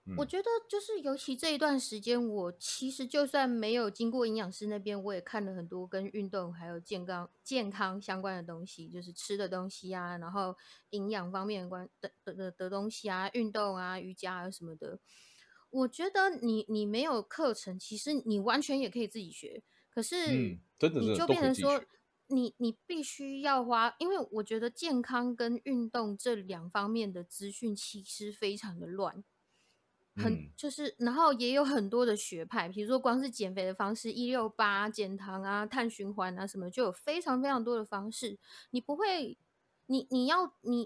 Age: 20-39